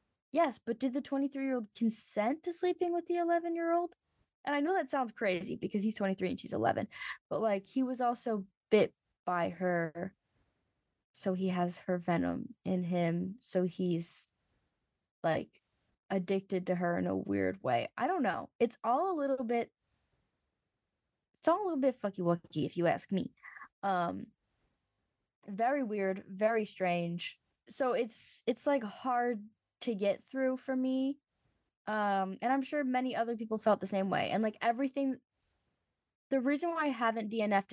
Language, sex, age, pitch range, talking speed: English, female, 10-29, 190-260 Hz, 160 wpm